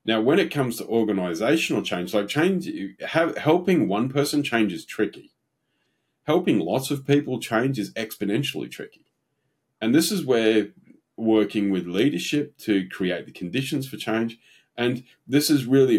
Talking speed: 155 wpm